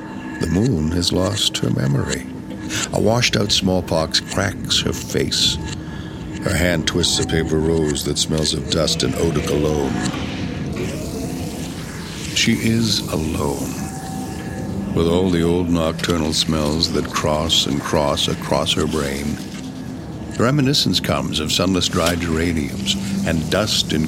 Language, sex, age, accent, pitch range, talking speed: English, male, 60-79, American, 75-100 Hz, 125 wpm